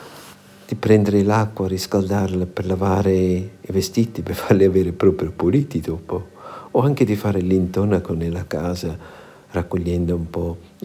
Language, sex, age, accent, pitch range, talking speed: Italian, male, 50-69, native, 90-100 Hz, 135 wpm